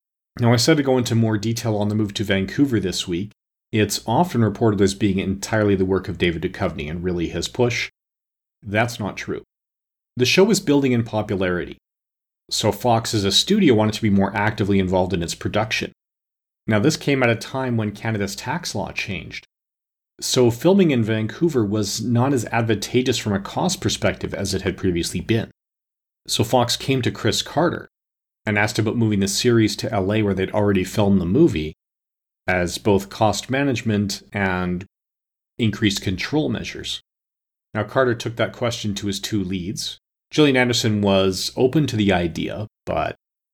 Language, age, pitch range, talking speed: English, 40-59, 95-115 Hz, 175 wpm